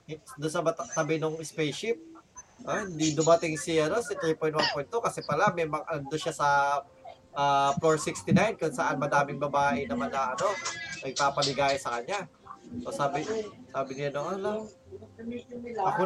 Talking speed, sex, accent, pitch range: 130 wpm, male, native, 160-215 Hz